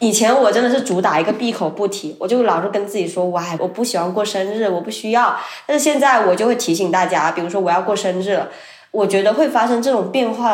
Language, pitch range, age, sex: Chinese, 180-235 Hz, 20-39, female